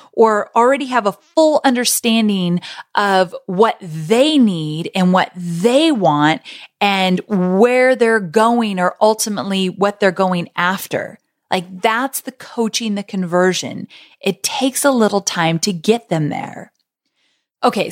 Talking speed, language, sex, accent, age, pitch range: 135 wpm, English, female, American, 30-49, 185-240 Hz